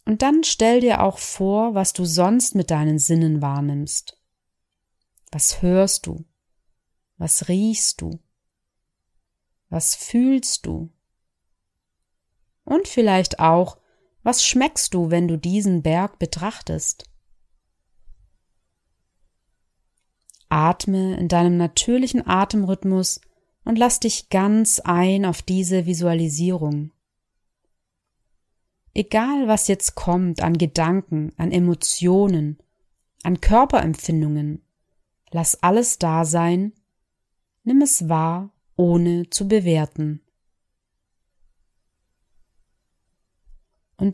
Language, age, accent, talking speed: German, 30-49, German, 90 wpm